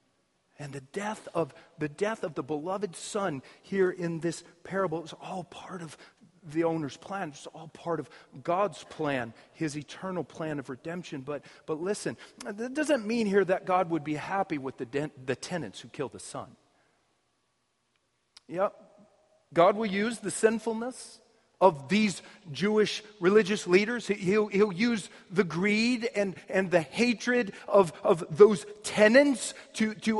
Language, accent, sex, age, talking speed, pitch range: English, American, male, 40-59, 155 wpm, 160-210 Hz